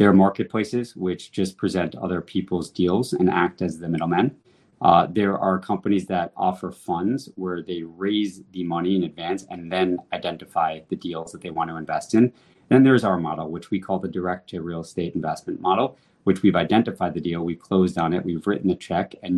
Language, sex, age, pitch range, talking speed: English, male, 30-49, 90-105 Hz, 210 wpm